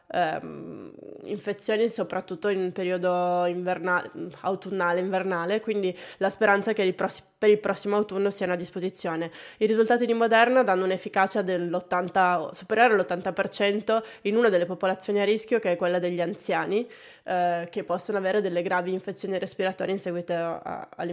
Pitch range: 180-210 Hz